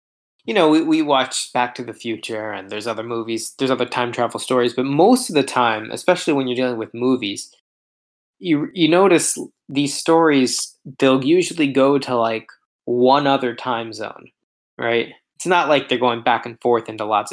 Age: 20-39